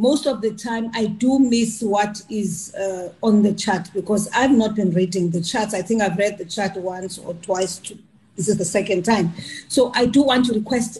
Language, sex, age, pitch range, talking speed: English, female, 40-59, 205-250 Hz, 225 wpm